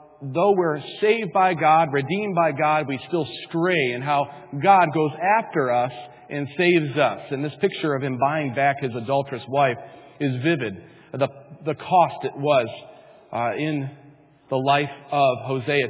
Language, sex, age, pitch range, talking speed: English, male, 40-59, 130-165 Hz, 160 wpm